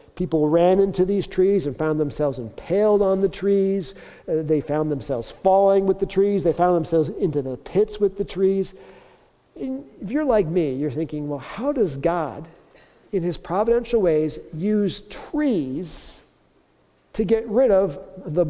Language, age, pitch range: English, 50-69, 160-210 Hz